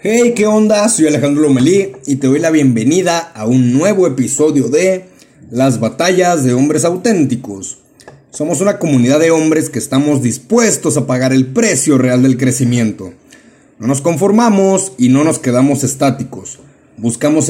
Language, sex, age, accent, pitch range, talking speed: Spanish, male, 30-49, Mexican, 125-155 Hz, 155 wpm